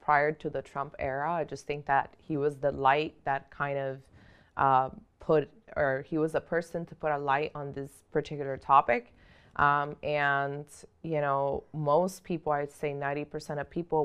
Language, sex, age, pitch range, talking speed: English, female, 20-39, 140-165 Hz, 185 wpm